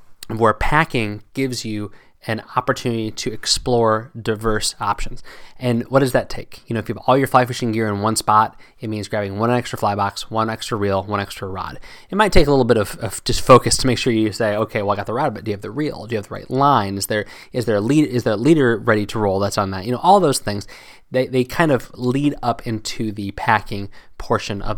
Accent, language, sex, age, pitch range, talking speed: American, English, male, 20-39, 105-130 Hz, 255 wpm